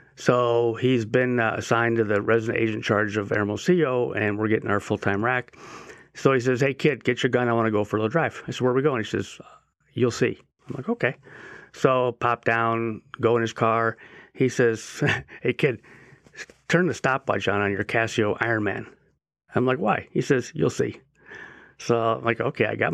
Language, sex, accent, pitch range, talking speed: English, male, American, 105-125 Hz, 205 wpm